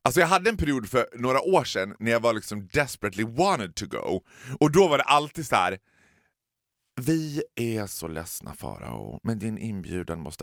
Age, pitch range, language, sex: 30-49, 105-145 Hz, Swedish, male